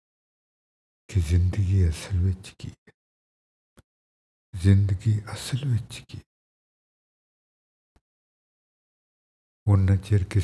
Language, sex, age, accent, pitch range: English, male, 60-79, Indian, 85-105 Hz